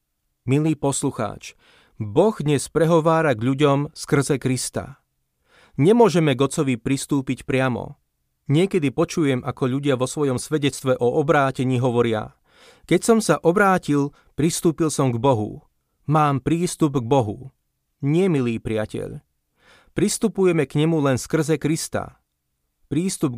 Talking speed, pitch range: 115 wpm, 125-155 Hz